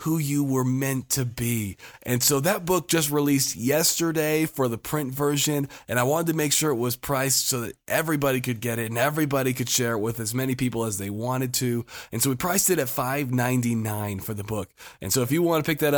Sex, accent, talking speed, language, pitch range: male, American, 235 wpm, English, 120-155 Hz